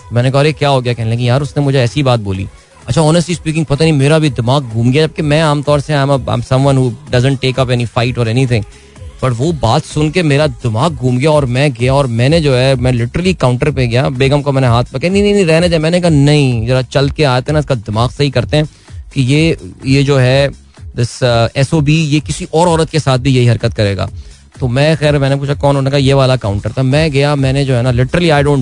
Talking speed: 225 wpm